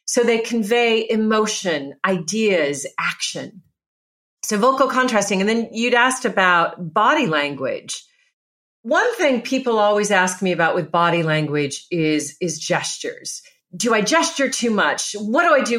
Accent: American